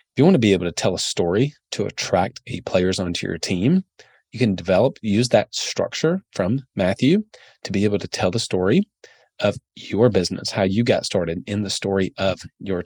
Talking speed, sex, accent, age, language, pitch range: 205 wpm, male, American, 30-49, English, 90-110 Hz